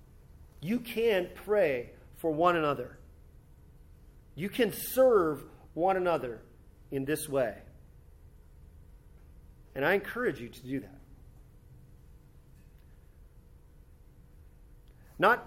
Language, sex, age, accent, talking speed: English, male, 40-59, American, 85 wpm